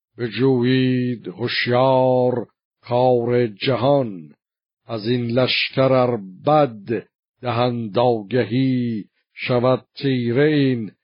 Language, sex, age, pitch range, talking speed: Persian, male, 50-69, 110-125 Hz, 70 wpm